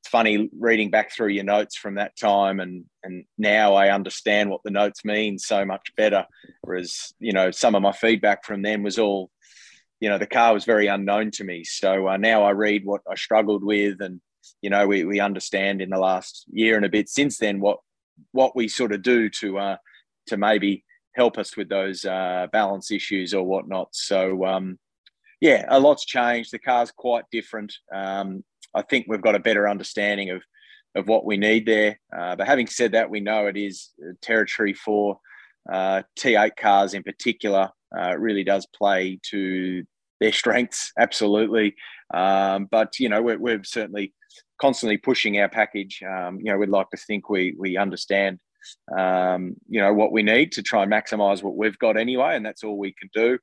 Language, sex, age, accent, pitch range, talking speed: English, male, 20-39, Australian, 95-110 Hz, 195 wpm